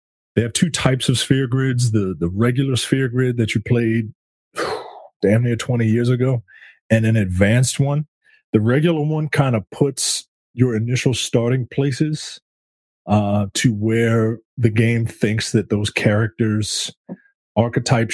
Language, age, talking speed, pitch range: English, 30-49, 150 wpm, 100-130 Hz